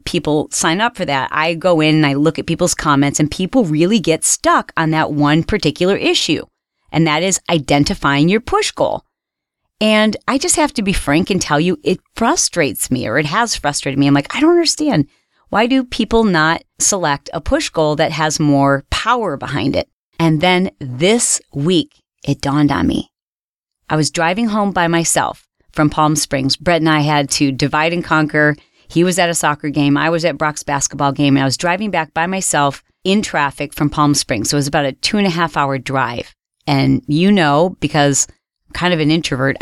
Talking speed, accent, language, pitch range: 205 wpm, American, English, 145-185 Hz